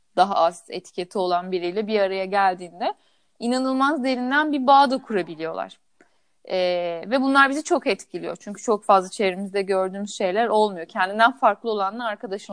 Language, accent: Turkish, native